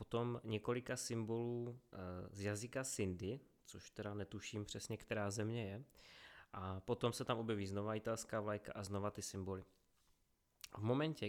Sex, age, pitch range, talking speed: male, 20-39, 105-125 Hz, 145 wpm